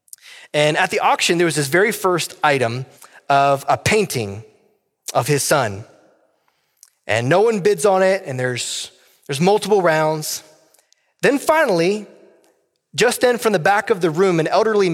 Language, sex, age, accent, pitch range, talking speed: English, male, 30-49, American, 145-195 Hz, 155 wpm